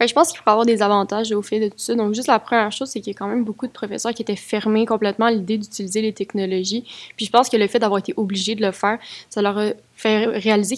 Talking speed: 295 wpm